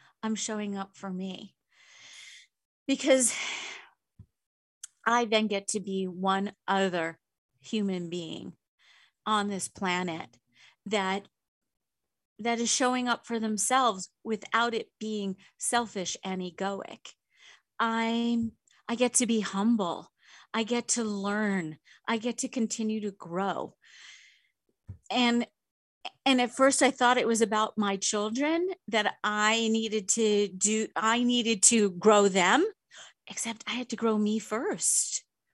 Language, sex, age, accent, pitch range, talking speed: English, female, 40-59, American, 200-235 Hz, 125 wpm